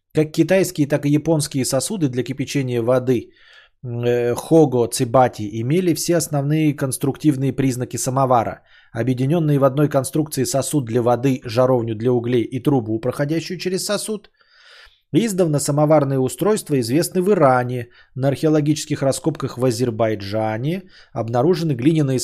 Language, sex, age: Bulgarian, male, 20-39